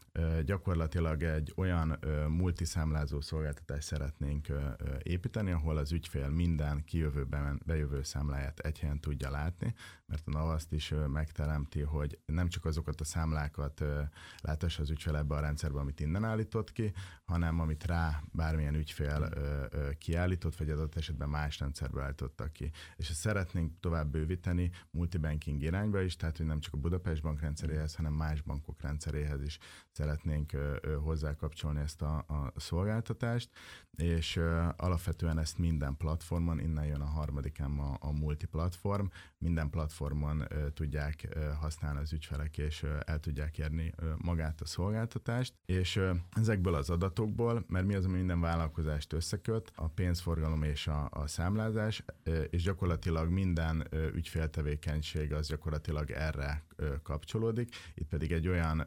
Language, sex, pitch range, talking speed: Hungarian, male, 75-85 Hz, 145 wpm